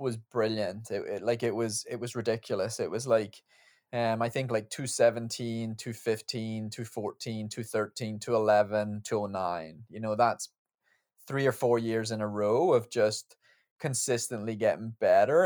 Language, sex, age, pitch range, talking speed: English, male, 20-39, 105-120 Hz, 140 wpm